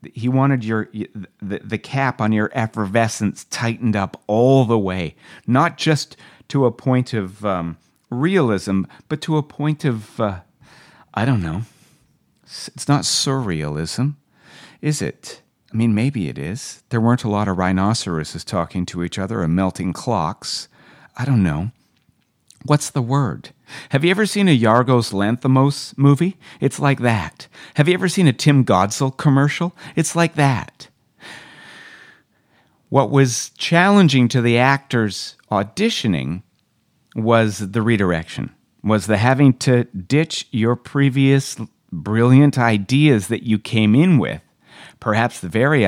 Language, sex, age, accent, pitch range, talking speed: English, male, 50-69, American, 100-140 Hz, 140 wpm